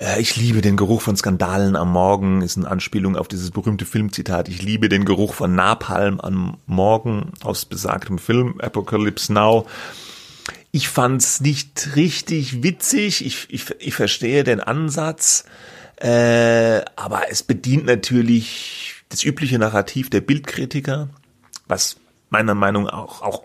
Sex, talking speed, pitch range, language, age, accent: male, 140 wpm, 105-130 Hz, German, 30-49, German